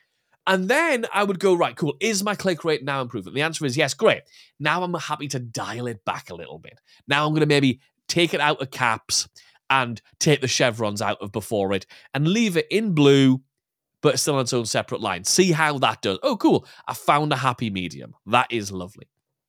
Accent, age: British, 30-49